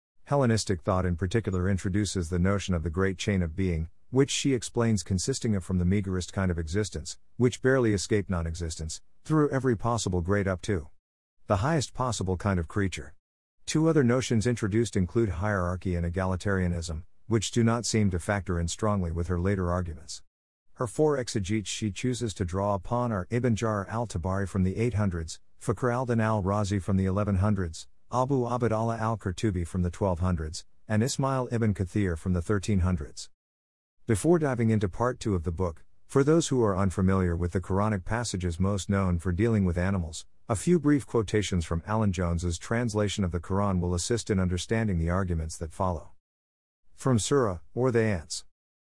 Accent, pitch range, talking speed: American, 90-115 Hz, 175 wpm